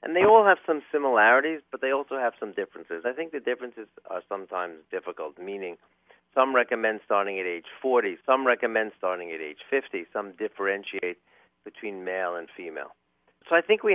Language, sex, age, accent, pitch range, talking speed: English, male, 50-69, American, 95-145 Hz, 180 wpm